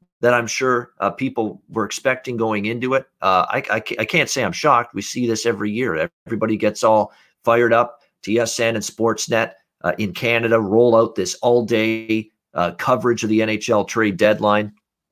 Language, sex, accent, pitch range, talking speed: English, male, American, 105-120 Hz, 180 wpm